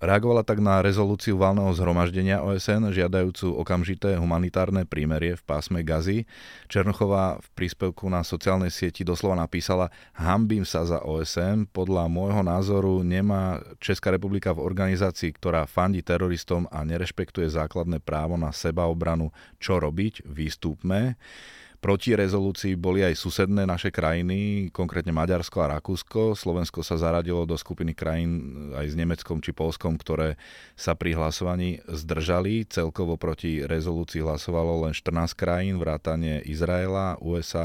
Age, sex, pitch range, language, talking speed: 30-49, male, 80-95 Hz, Slovak, 135 wpm